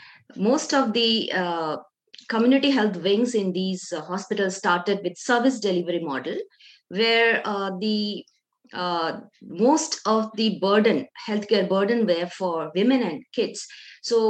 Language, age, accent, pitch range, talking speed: English, 20-39, Indian, 200-255 Hz, 135 wpm